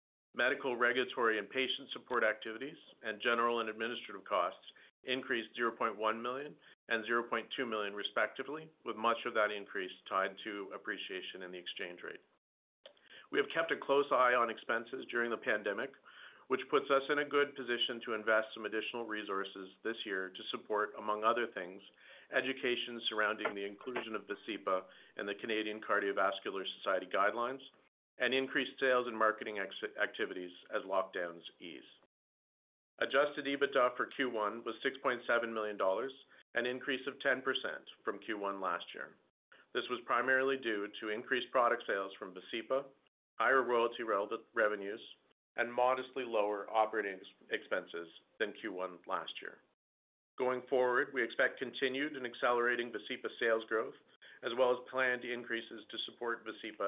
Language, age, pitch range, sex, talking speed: English, 50-69, 105-130 Hz, male, 145 wpm